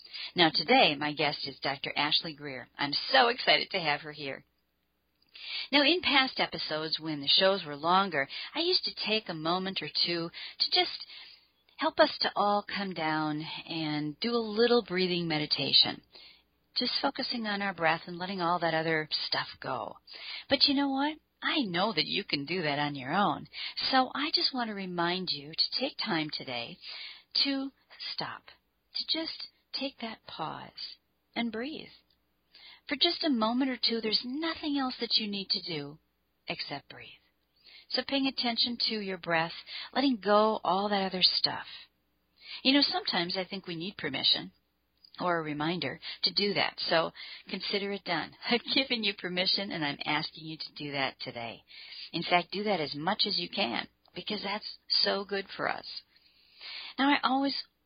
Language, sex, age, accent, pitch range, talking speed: English, female, 40-59, American, 155-240 Hz, 175 wpm